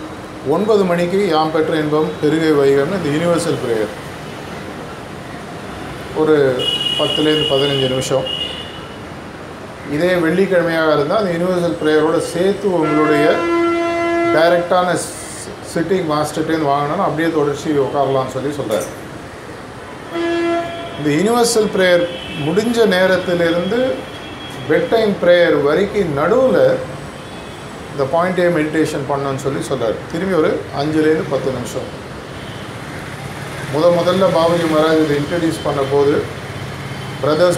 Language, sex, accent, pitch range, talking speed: Tamil, male, native, 145-175 Hz, 95 wpm